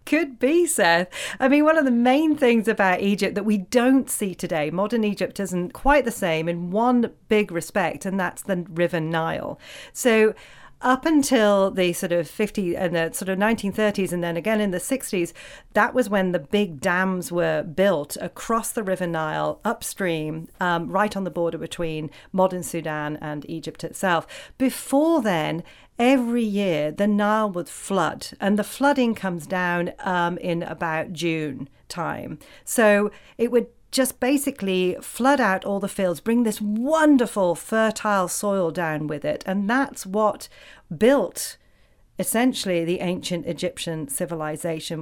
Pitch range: 170-225 Hz